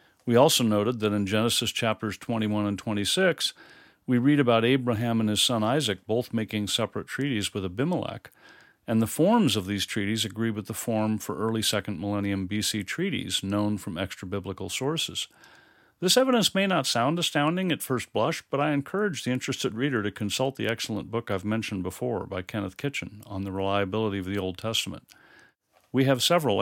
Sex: male